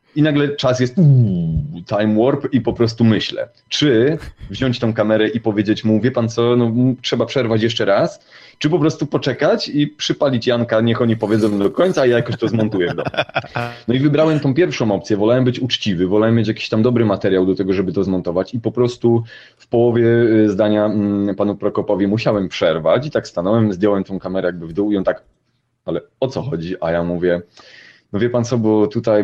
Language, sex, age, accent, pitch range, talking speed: Polish, male, 30-49, native, 95-120 Hz, 200 wpm